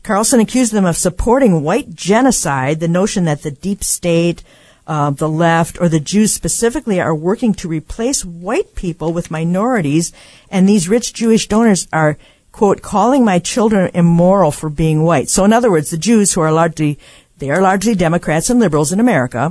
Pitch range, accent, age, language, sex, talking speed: 155-200 Hz, American, 50-69, English, female, 180 wpm